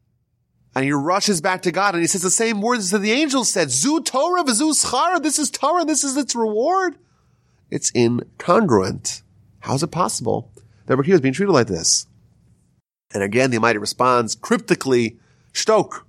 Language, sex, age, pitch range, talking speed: English, male, 30-49, 110-140 Hz, 175 wpm